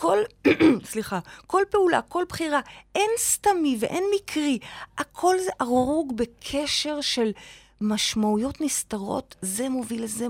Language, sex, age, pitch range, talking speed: Hebrew, female, 30-49, 225-345 Hz, 115 wpm